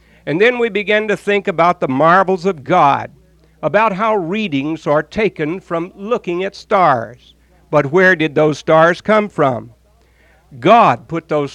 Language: English